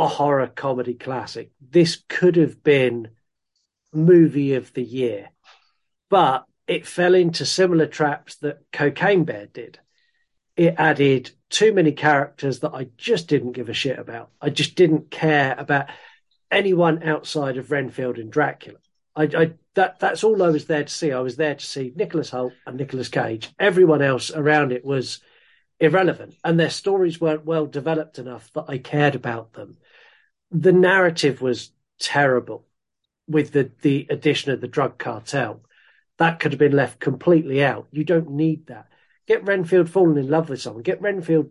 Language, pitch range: English, 130-165 Hz